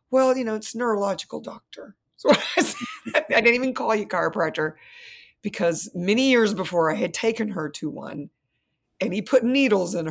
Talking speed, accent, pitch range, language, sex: 185 wpm, American, 165-260 Hz, English, female